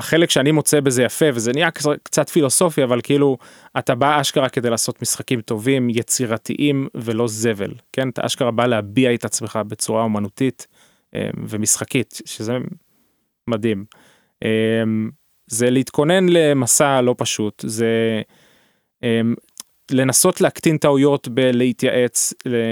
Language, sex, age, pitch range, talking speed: Hebrew, male, 20-39, 115-145 Hz, 115 wpm